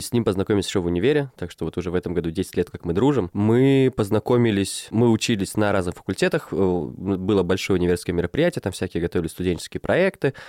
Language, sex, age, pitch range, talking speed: Russian, male, 20-39, 90-120 Hz, 195 wpm